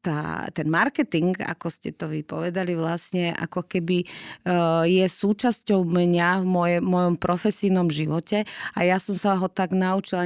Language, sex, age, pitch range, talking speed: Slovak, female, 30-49, 155-180 Hz, 145 wpm